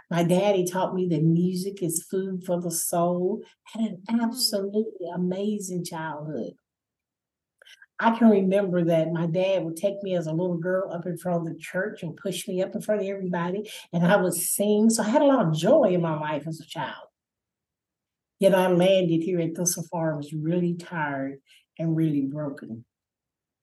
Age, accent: 50-69, American